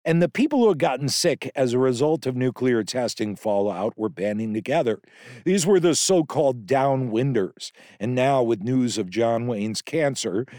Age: 50-69